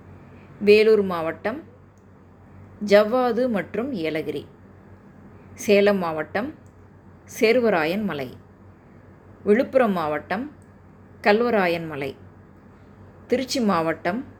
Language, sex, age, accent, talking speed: Tamil, female, 20-39, native, 65 wpm